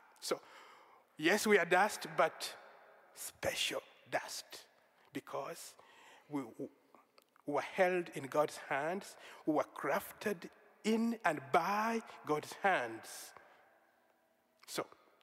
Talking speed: 100 wpm